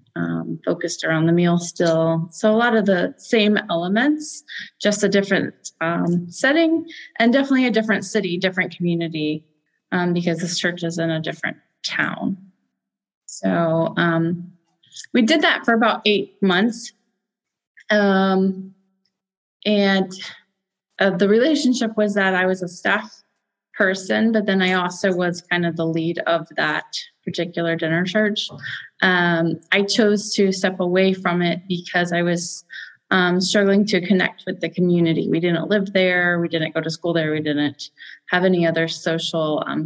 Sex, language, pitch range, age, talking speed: female, English, 170-205 Hz, 20-39, 155 wpm